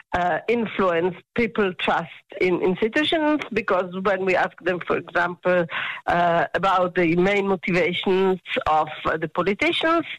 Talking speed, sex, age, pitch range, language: 125 wpm, female, 50-69, 175-225 Hz, English